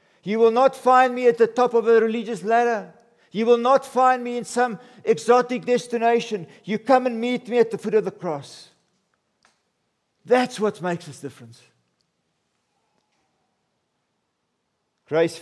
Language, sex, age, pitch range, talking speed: English, male, 50-69, 155-220 Hz, 150 wpm